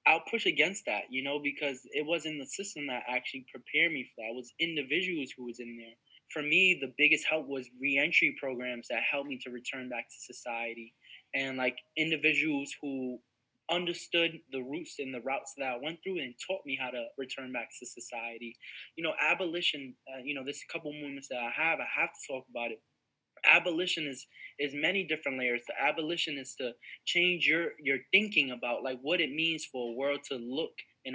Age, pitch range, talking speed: 20-39, 130-165 Hz, 205 wpm